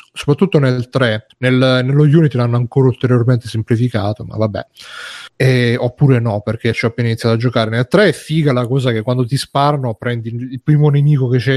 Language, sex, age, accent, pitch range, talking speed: Italian, male, 30-49, native, 115-140 Hz, 185 wpm